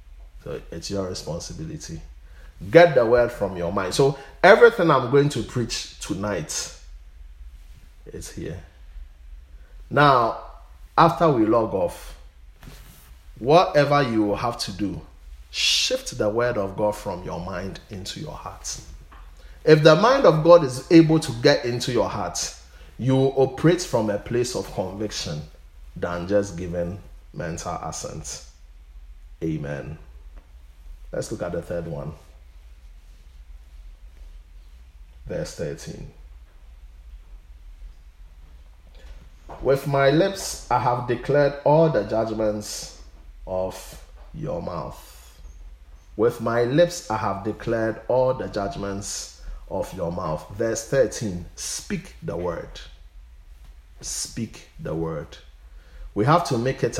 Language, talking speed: English, 115 wpm